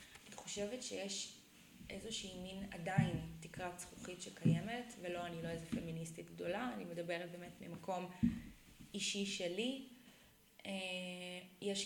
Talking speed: 105 wpm